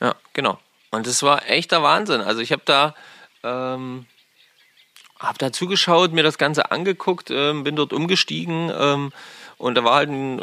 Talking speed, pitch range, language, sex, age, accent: 165 wpm, 120-170 Hz, German, male, 30-49, German